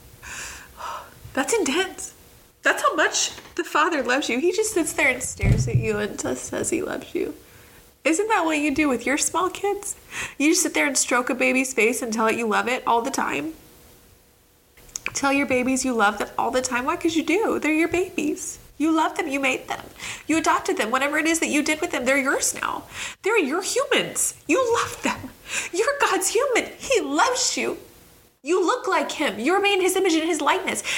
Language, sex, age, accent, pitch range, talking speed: English, female, 20-39, American, 265-345 Hz, 210 wpm